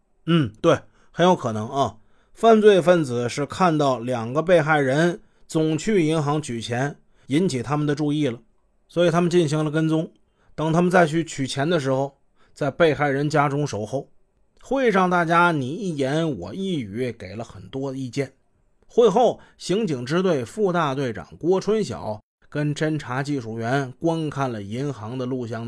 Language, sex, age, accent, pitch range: Chinese, male, 30-49, native, 130-170 Hz